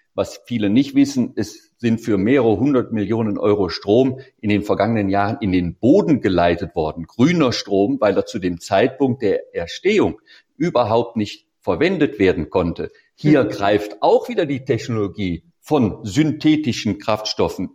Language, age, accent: German, 50-69, German